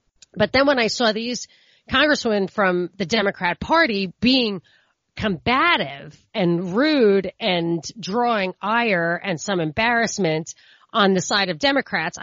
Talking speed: 130 wpm